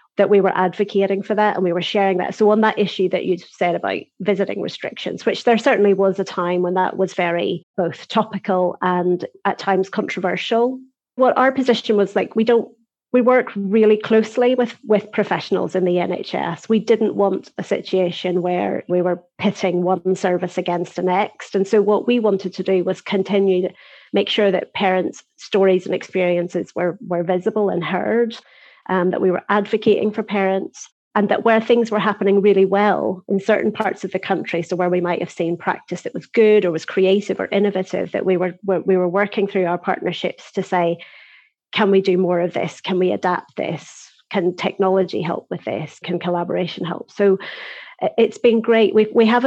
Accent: British